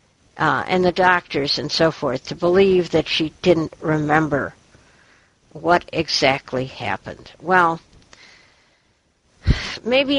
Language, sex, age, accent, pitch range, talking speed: English, female, 60-79, American, 155-195 Hz, 105 wpm